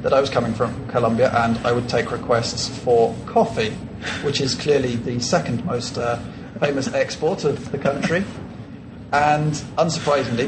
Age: 40-59